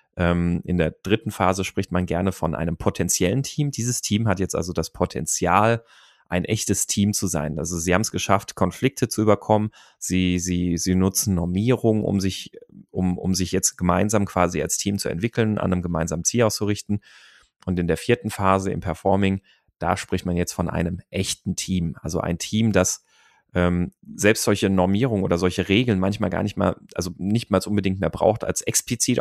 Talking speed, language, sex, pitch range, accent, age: 185 wpm, German, male, 90-105 Hz, German, 30-49